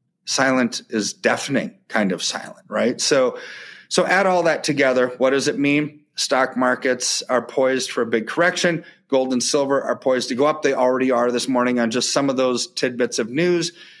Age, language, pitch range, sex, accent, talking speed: 30-49, English, 125-170 Hz, male, American, 195 wpm